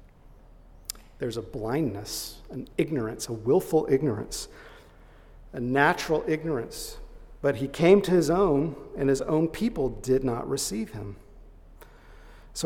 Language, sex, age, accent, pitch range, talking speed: English, male, 50-69, American, 130-175 Hz, 125 wpm